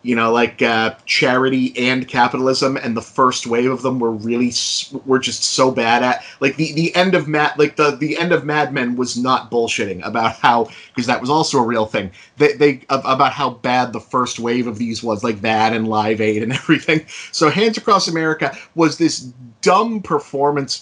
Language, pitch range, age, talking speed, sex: English, 120-155 Hz, 30-49, 205 wpm, male